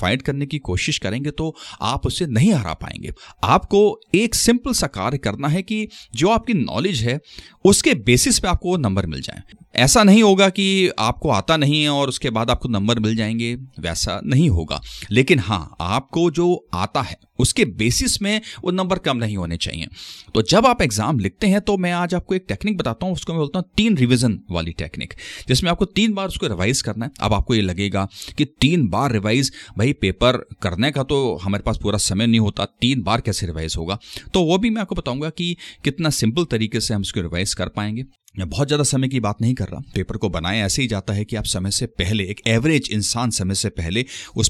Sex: male